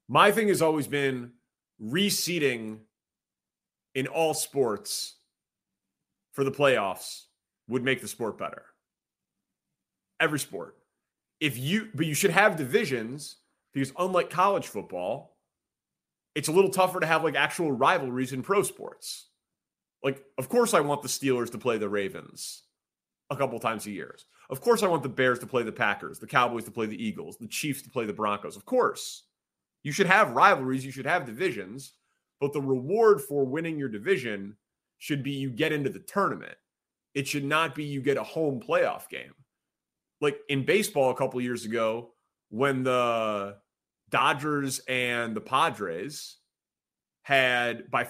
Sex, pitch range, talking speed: male, 125-160 Hz, 160 wpm